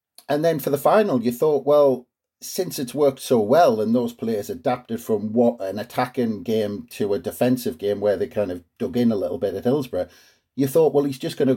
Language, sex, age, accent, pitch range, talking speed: English, male, 40-59, British, 115-145 Hz, 230 wpm